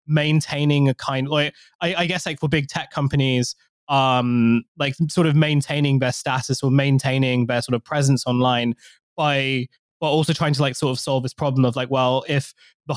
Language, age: English, 20-39